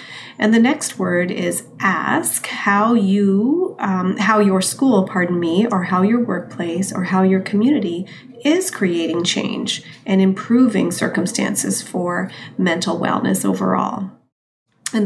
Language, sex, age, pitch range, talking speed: English, female, 30-49, 180-205 Hz, 130 wpm